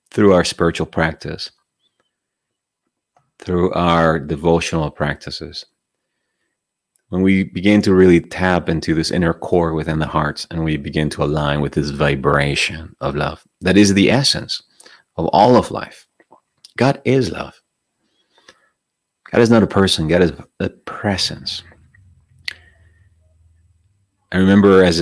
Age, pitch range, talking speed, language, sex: 30-49, 75-90 Hz, 130 wpm, English, male